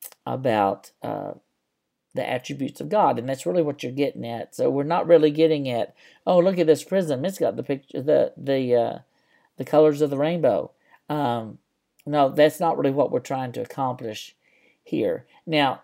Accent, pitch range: American, 115-150 Hz